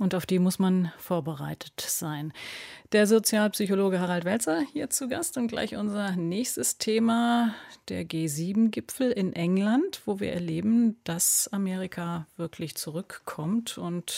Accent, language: German, German